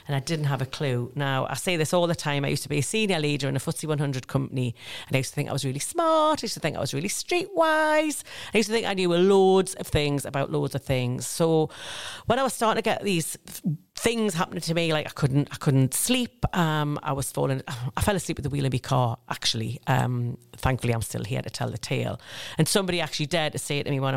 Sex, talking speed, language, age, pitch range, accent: female, 265 wpm, English, 40-59, 135-170 Hz, British